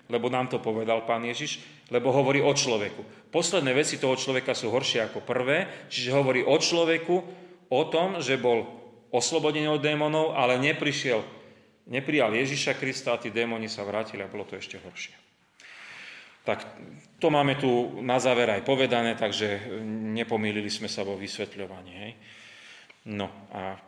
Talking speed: 150 wpm